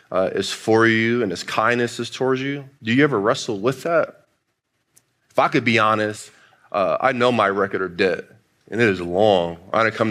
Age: 20-39